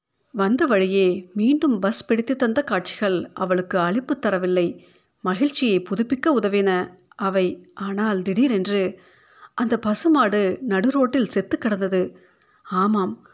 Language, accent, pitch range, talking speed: Tamil, native, 190-245 Hz, 100 wpm